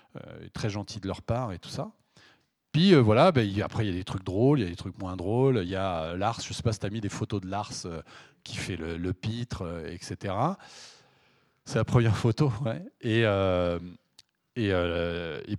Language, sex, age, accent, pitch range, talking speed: French, male, 40-59, French, 100-135 Hz, 230 wpm